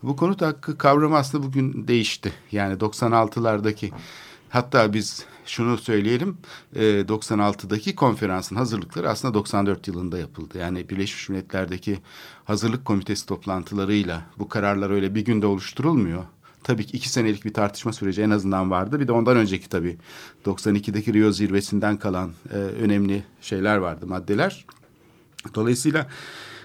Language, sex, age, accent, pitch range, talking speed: Turkish, male, 60-79, native, 100-120 Hz, 125 wpm